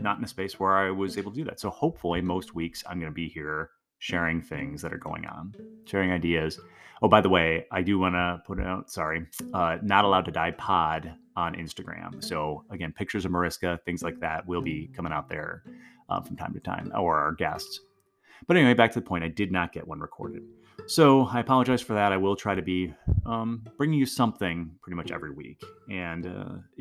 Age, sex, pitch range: 30-49, male, 85-125 Hz